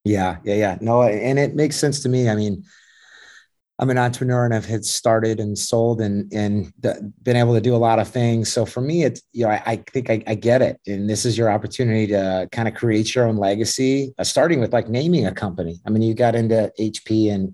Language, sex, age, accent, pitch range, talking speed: English, male, 30-49, American, 105-120 Hz, 245 wpm